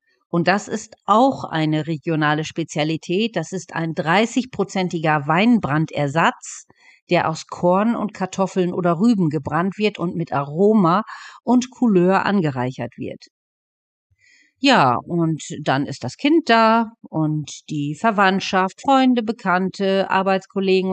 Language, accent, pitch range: German, German, 155-210 Hz